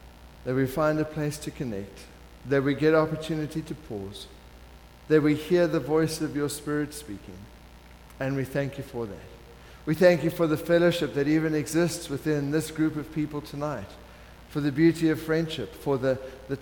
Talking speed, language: 185 wpm, English